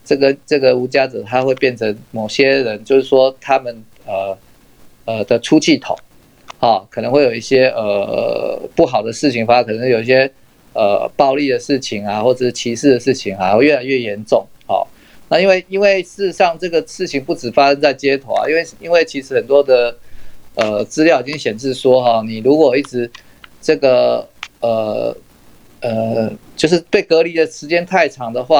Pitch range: 120-155 Hz